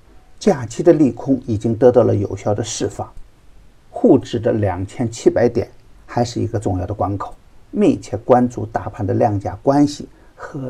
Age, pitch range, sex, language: 50-69, 100-125 Hz, male, Chinese